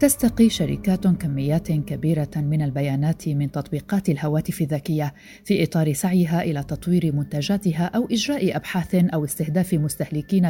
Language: Arabic